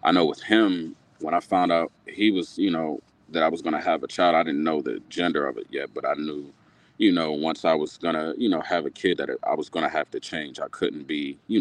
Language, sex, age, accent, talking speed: English, male, 30-49, American, 285 wpm